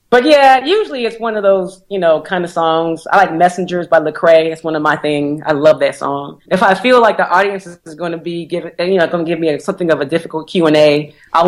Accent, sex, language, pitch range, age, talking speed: American, female, English, 160-195 Hz, 30-49, 265 wpm